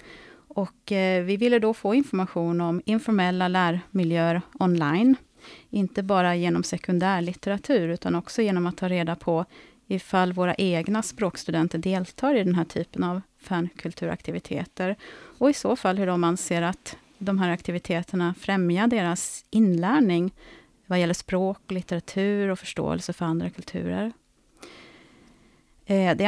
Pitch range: 170-205 Hz